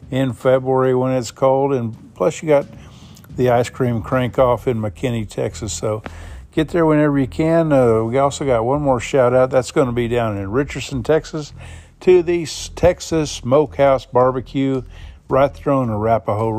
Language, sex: English, male